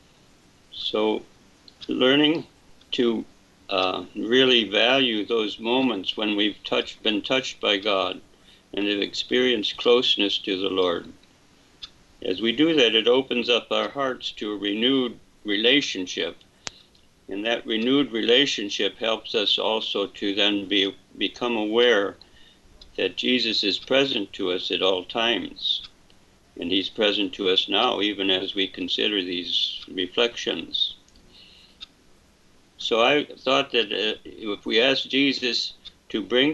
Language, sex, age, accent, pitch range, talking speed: English, male, 60-79, American, 100-125 Hz, 130 wpm